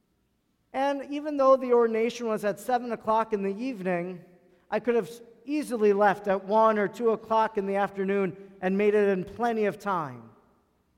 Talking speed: 175 wpm